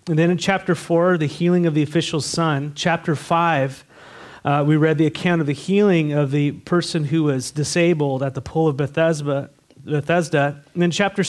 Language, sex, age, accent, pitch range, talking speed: English, male, 30-49, American, 140-170 Hz, 185 wpm